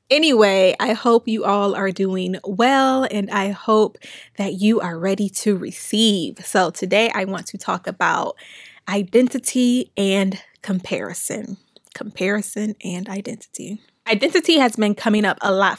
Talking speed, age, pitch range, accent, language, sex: 140 wpm, 20-39, 195-230 Hz, American, English, female